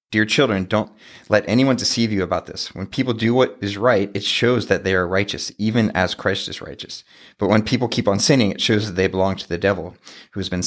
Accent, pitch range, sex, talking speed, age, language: American, 95-115 Hz, male, 240 wpm, 30-49, English